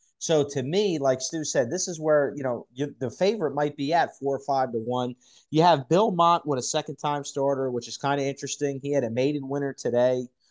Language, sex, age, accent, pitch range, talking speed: English, male, 30-49, American, 120-145 Hz, 230 wpm